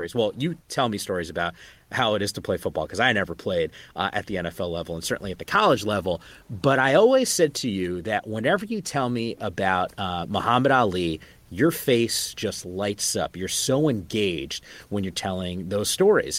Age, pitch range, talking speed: 30-49, 90-120 Hz, 200 wpm